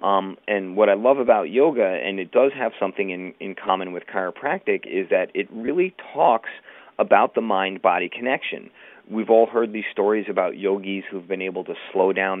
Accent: American